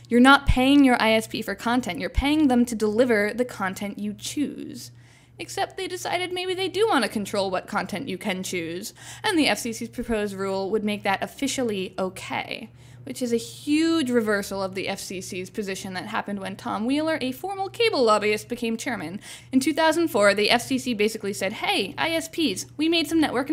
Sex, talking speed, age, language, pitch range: female, 185 wpm, 10-29, English, 200-305 Hz